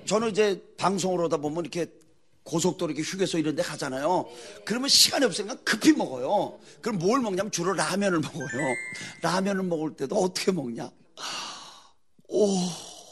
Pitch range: 170-275 Hz